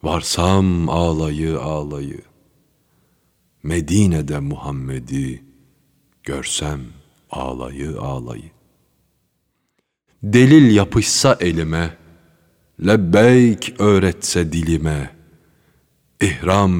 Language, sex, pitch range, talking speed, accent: Turkish, male, 75-100 Hz, 55 wpm, native